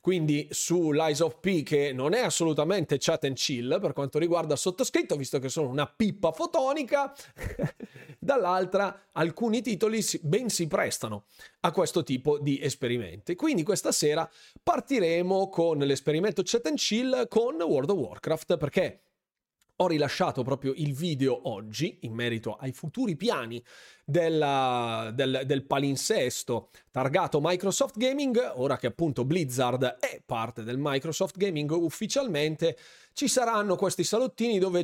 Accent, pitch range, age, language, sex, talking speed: native, 150-210 Hz, 30-49, Italian, male, 135 wpm